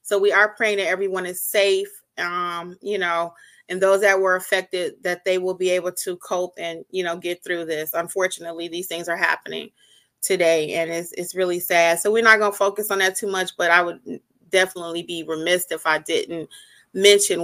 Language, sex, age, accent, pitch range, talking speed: English, female, 30-49, American, 170-210 Hz, 205 wpm